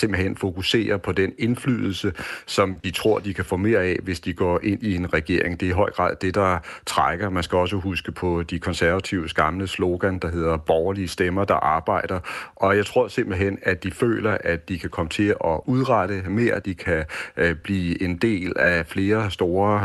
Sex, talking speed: male, 205 wpm